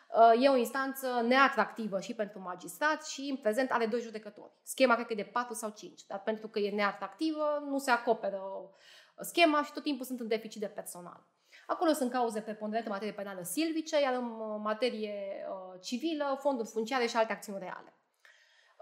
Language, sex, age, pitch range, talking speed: Romanian, female, 20-39, 210-275 Hz, 180 wpm